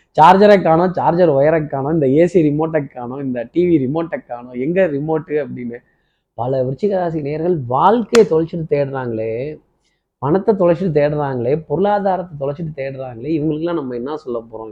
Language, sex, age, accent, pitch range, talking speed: Tamil, male, 20-39, native, 135-180 Hz, 140 wpm